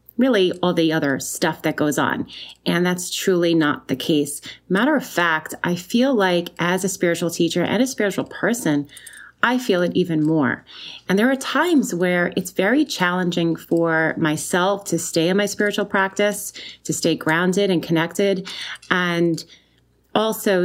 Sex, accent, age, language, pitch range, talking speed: female, American, 30-49, English, 160-195 Hz, 165 wpm